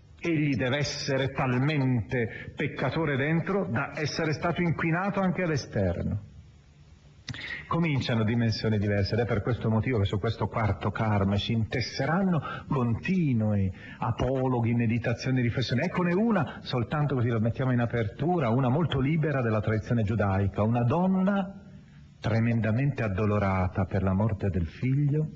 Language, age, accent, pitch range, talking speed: Italian, 40-59, native, 100-130 Hz, 130 wpm